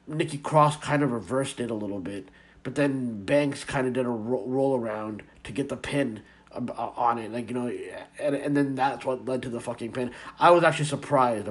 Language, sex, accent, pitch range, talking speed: English, male, American, 125-160 Hz, 230 wpm